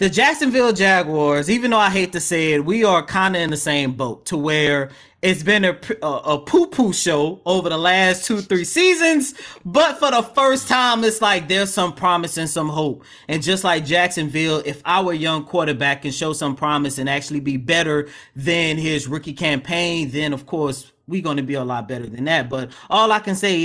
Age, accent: 30-49, American